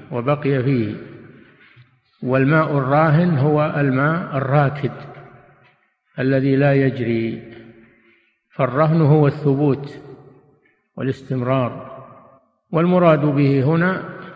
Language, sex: Arabic, male